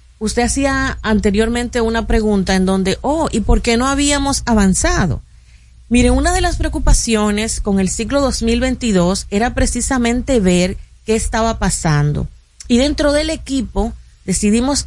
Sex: female